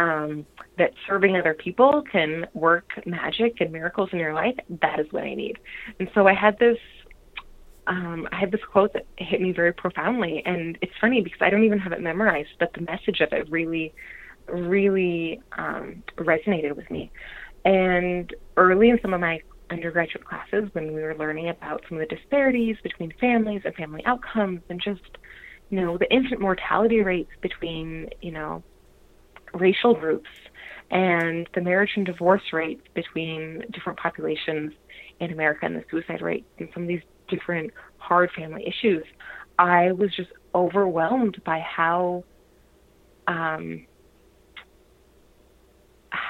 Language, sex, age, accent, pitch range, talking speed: English, female, 20-39, American, 165-200 Hz, 155 wpm